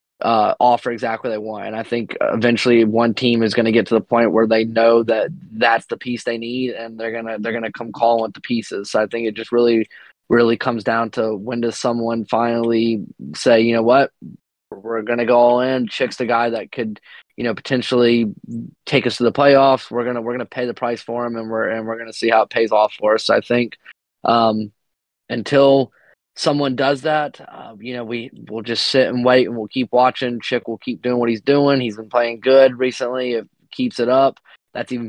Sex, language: male, English